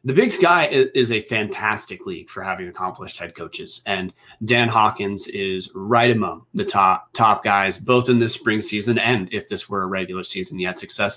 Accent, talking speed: American, 200 wpm